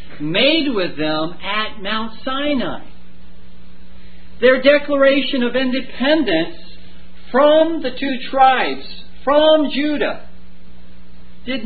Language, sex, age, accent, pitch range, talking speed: English, male, 50-69, American, 160-260 Hz, 90 wpm